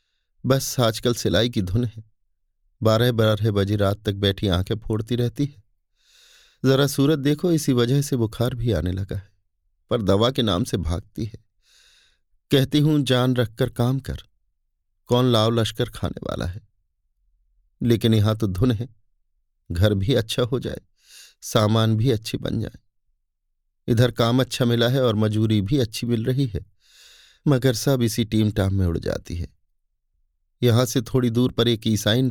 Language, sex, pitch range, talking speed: Hindi, male, 95-120 Hz, 165 wpm